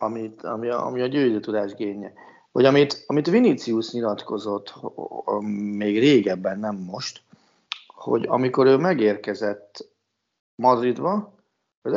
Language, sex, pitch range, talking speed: Hungarian, male, 100-125 Hz, 110 wpm